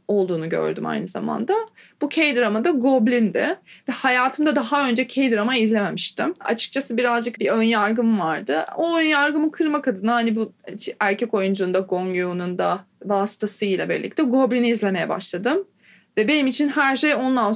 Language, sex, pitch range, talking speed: Turkish, female, 200-255 Hz, 145 wpm